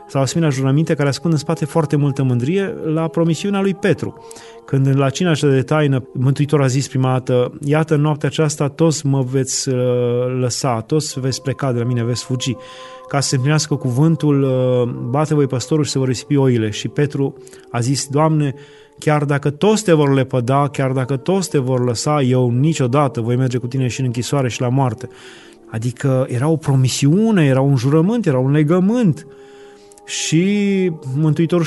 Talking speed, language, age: 180 wpm, Romanian, 30-49